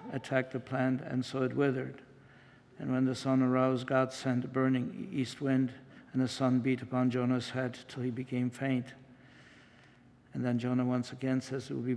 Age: 60-79